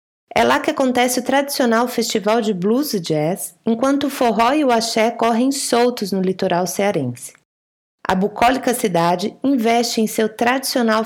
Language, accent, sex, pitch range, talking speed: Portuguese, Brazilian, female, 195-260 Hz, 155 wpm